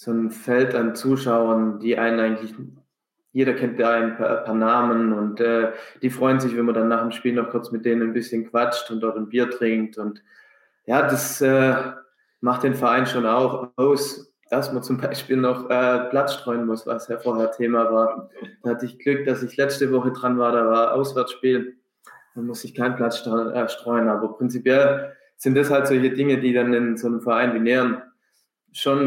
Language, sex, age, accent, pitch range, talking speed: German, male, 20-39, German, 115-130 Hz, 200 wpm